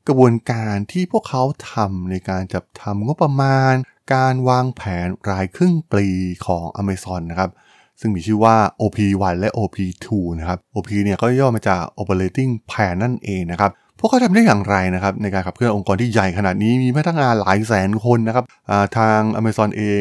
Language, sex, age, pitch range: Thai, male, 20-39, 100-140 Hz